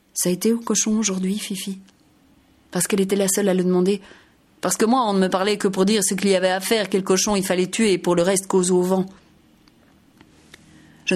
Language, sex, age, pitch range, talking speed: French, female, 30-49, 175-195 Hz, 235 wpm